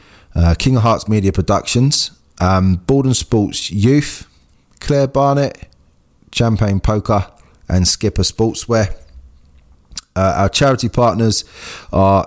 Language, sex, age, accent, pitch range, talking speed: English, male, 20-39, British, 85-105 Hz, 110 wpm